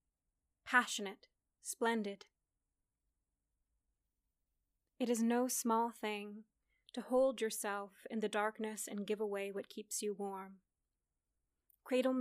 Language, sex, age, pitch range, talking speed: English, female, 30-49, 215-245 Hz, 105 wpm